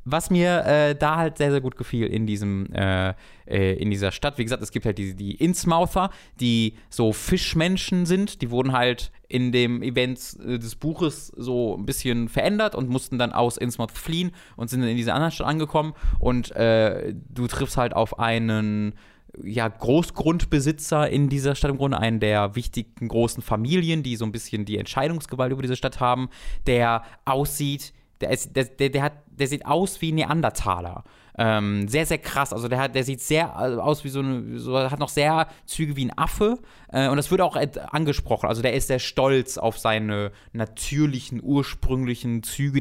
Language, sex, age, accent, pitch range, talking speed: German, male, 20-39, German, 115-150 Hz, 180 wpm